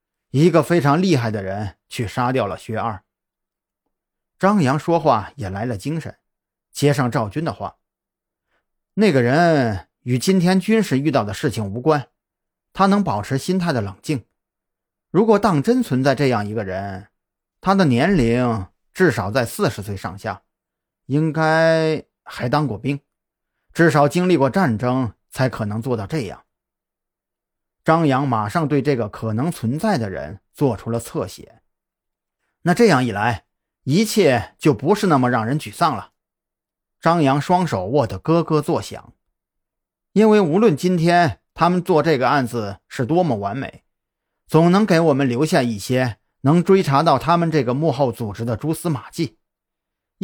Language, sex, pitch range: Chinese, male, 115-165 Hz